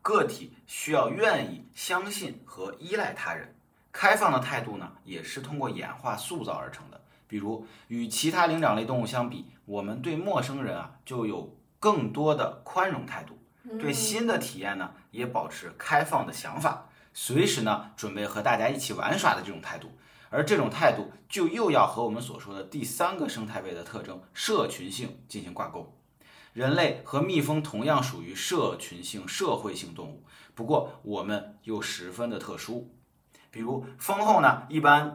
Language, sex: Chinese, male